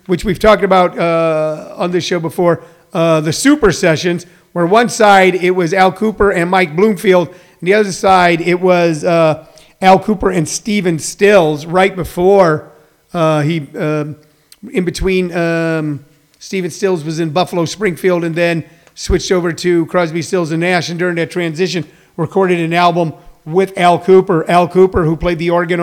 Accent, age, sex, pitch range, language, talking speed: American, 40-59, male, 165-205 Hz, English, 170 wpm